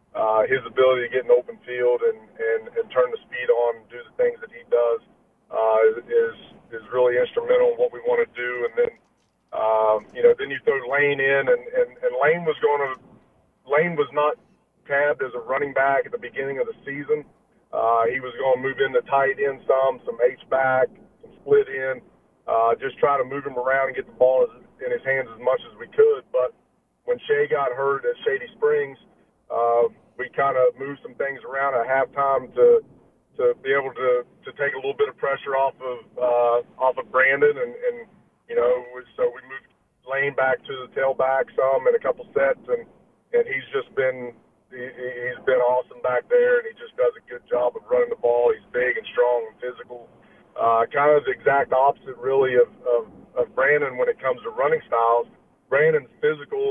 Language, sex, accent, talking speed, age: English, male, American, 210 wpm, 40-59